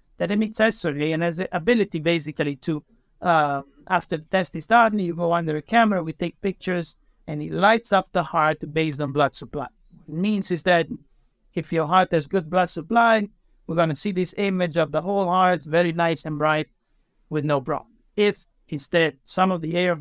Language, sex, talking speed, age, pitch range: English, male, 205 wpm, 60-79, 150-185 Hz